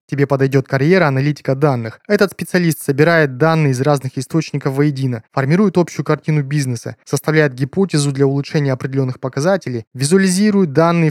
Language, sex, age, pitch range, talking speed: Russian, male, 20-39, 140-170 Hz, 135 wpm